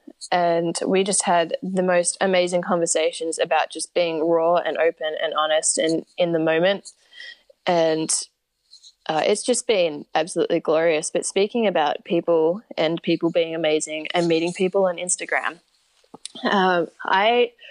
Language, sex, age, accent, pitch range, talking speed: English, female, 10-29, Australian, 165-195 Hz, 140 wpm